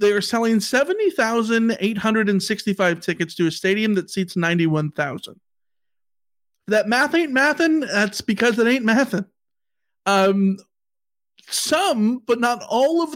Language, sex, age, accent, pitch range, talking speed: English, male, 40-59, American, 175-225 Hz, 120 wpm